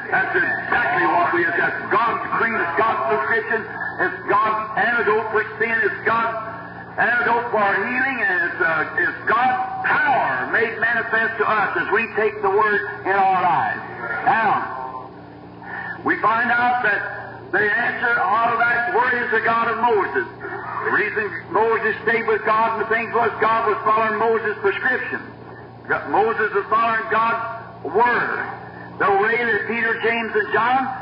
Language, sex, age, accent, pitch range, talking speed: English, male, 60-79, American, 215-250 Hz, 160 wpm